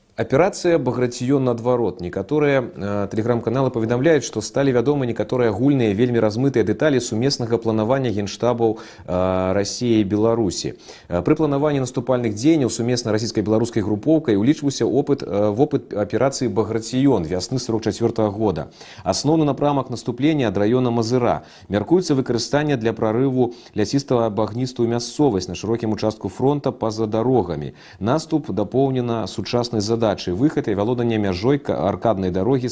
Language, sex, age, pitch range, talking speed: Russian, male, 30-49, 105-130 Hz, 125 wpm